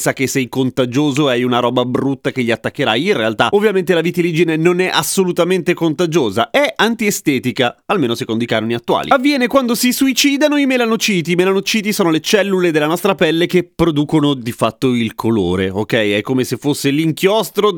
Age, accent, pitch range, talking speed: 30-49, native, 135-205 Hz, 175 wpm